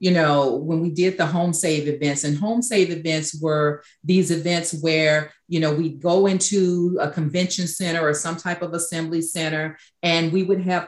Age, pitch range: 40-59, 165-200 Hz